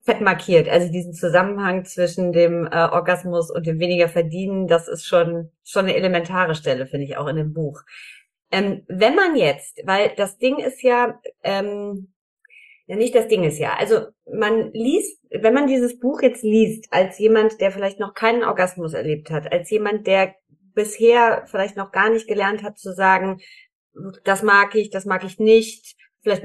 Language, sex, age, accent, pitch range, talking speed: German, female, 30-49, German, 185-255 Hz, 180 wpm